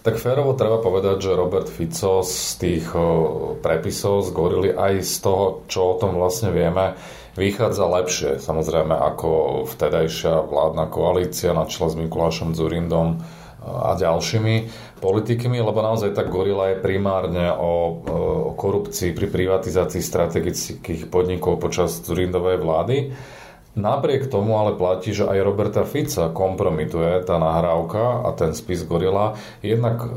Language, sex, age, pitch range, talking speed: Slovak, male, 40-59, 85-100 Hz, 125 wpm